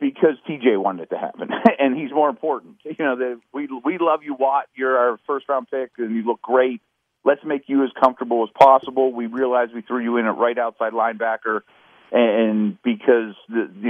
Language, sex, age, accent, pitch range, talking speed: English, male, 40-59, American, 110-135 Hz, 205 wpm